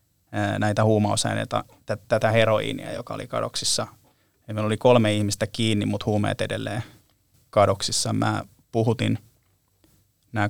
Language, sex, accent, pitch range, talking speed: Finnish, male, native, 105-120 Hz, 110 wpm